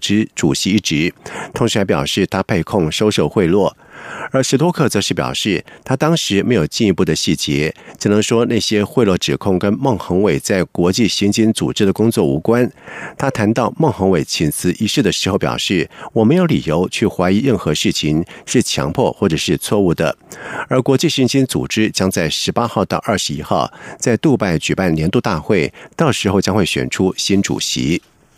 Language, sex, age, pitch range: German, male, 50-69, 90-125 Hz